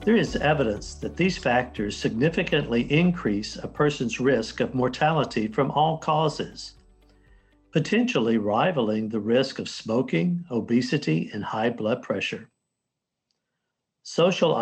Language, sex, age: English, male, 60-79